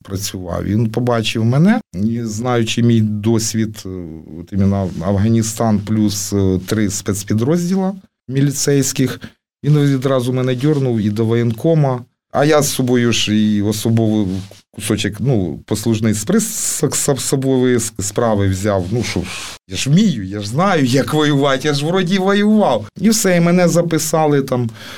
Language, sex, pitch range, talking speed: Ukrainian, male, 105-145 Hz, 135 wpm